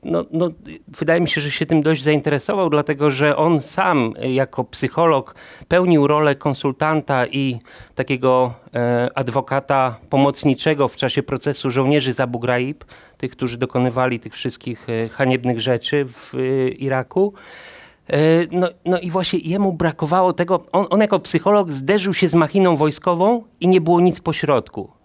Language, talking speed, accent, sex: Polish, 155 wpm, native, male